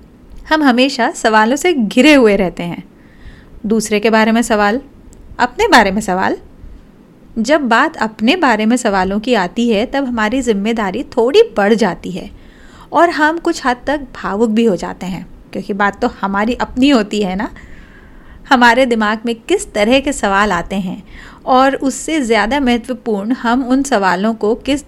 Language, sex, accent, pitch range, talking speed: Hindi, female, native, 215-265 Hz, 170 wpm